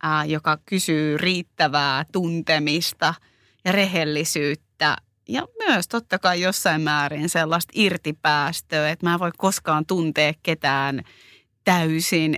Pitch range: 155-185 Hz